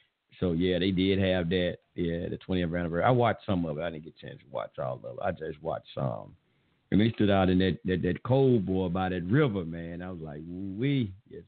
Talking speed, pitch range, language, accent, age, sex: 255 wpm, 85-100 Hz, English, American, 50-69, male